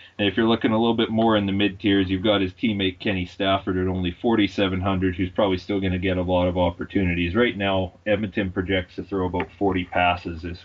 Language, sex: English, male